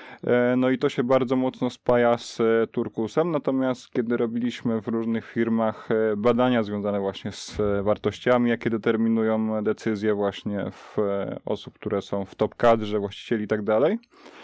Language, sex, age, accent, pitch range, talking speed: Polish, male, 20-39, native, 105-120 Hz, 140 wpm